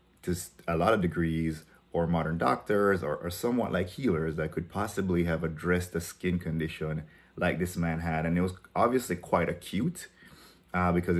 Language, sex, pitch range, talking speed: English, male, 80-90 Hz, 170 wpm